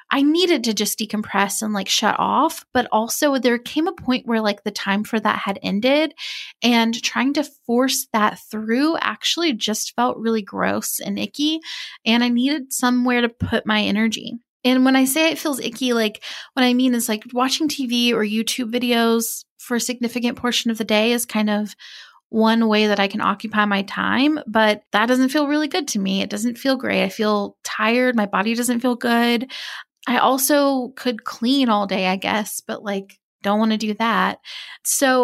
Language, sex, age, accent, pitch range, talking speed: English, female, 20-39, American, 215-260 Hz, 200 wpm